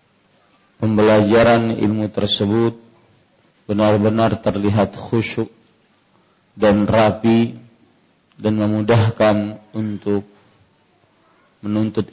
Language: Malay